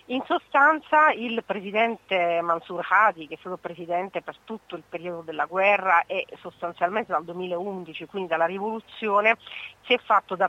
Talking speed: 155 wpm